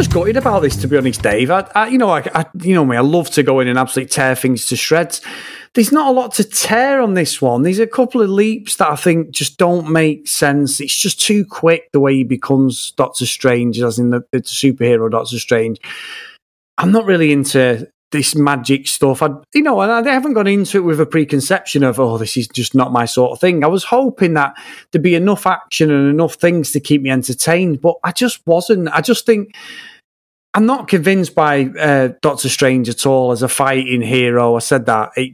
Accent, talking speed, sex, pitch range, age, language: British, 225 wpm, male, 130-185 Hz, 30-49, English